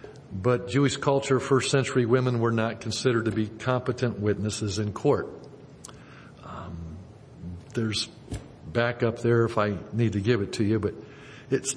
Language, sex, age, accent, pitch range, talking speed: English, male, 60-79, American, 120-160 Hz, 155 wpm